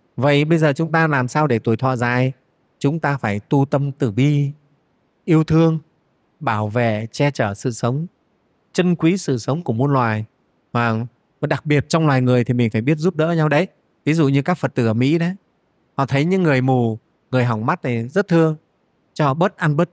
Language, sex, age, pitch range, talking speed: Vietnamese, male, 20-39, 120-155 Hz, 215 wpm